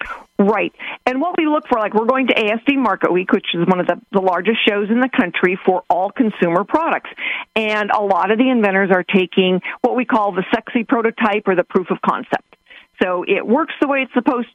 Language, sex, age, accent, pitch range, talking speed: English, female, 50-69, American, 195-250 Hz, 225 wpm